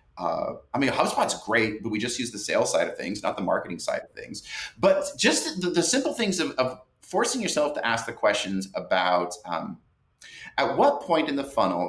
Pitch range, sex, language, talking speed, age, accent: 100-135 Hz, male, English, 210 wpm, 30-49, American